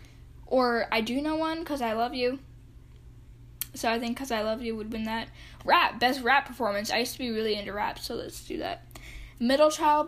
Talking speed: 215 wpm